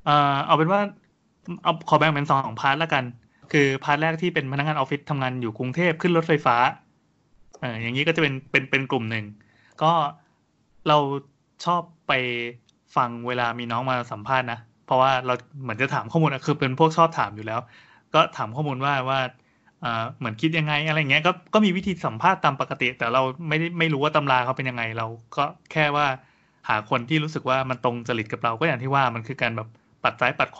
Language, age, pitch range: Thai, 20-39, 125-160 Hz